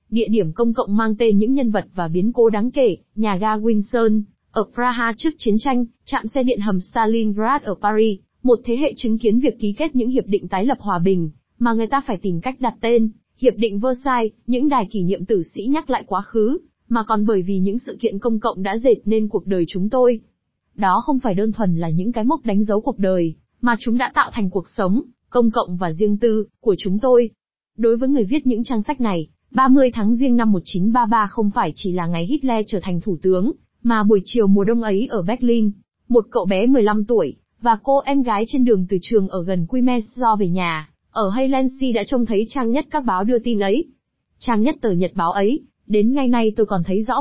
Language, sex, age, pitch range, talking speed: Vietnamese, female, 20-39, 200-245 Hz, 235 wpm